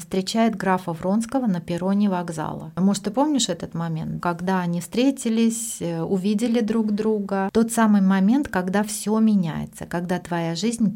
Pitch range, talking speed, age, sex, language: 175-215 Hz, 140 wpm, 30-49, female, Russian